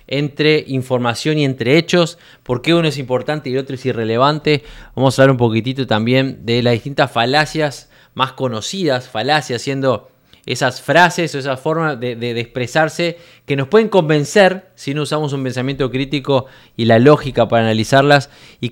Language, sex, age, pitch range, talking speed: Spanish, male, 20-39, 120-155 Hz, 175 wpm